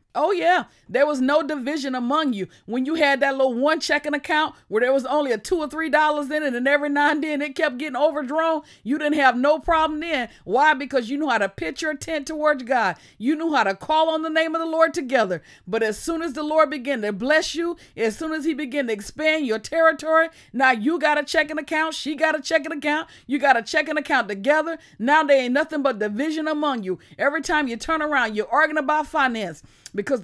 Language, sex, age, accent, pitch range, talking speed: English, female, 40-59, American, 235-310 Hz, 235 wpm